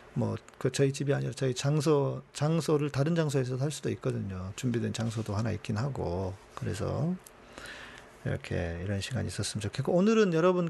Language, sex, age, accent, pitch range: Korean, male, 40-59, native, 115-160 Hz